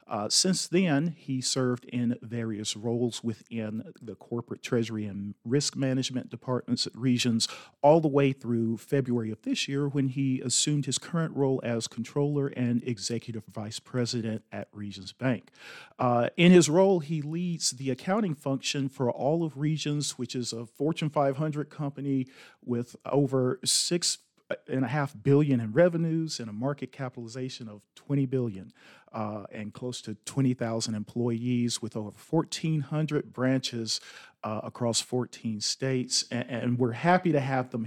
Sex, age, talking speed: male, 40-59, 150 wpm